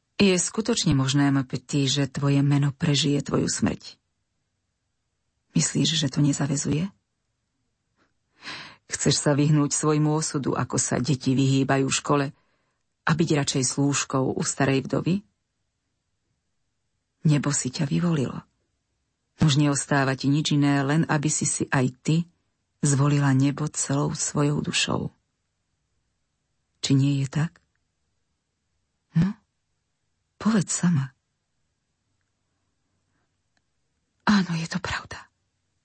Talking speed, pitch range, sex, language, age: 105 wpm, 135-165 Hz, female, Slovak, 40-59